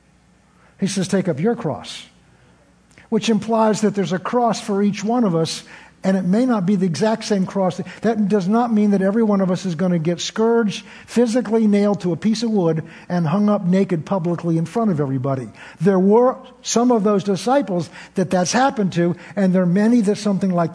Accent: American